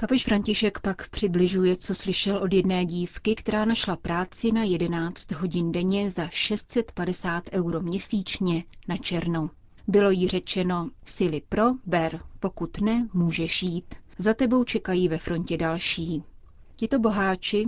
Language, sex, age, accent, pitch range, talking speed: Czech, female, 30-49, native, 170-205 Hz, 135 wpm